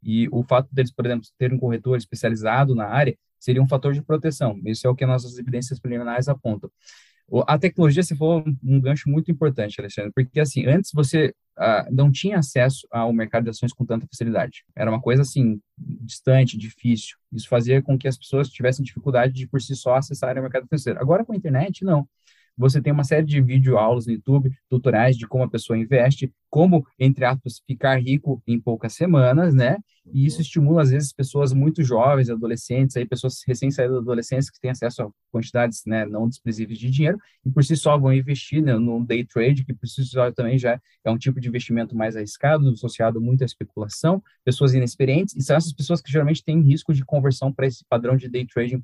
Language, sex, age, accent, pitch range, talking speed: Portuguese, male, 20-39, Brazilian, 120-140 Hz, 205 wpm